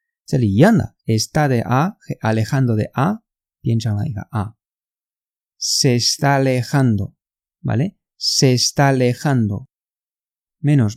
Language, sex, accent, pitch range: Chinese, male, Spanish, 115-160 Hz